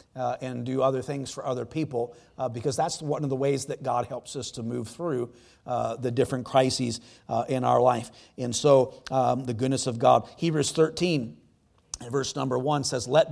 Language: English